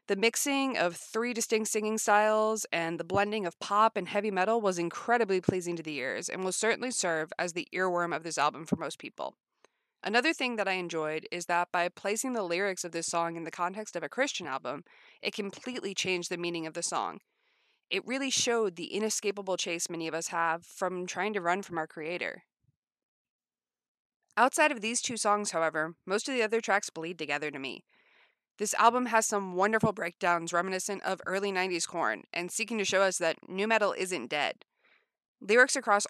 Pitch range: 170-220 Hz